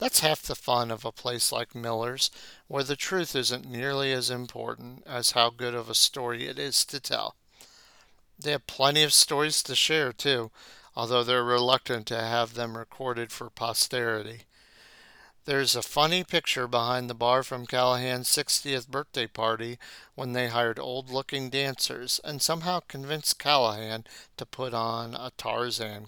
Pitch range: 115-140 Hz